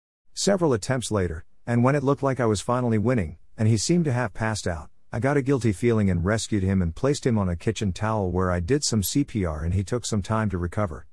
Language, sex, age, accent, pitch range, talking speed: English, male, 50-69, American, 90-120 Hz, 250 wpm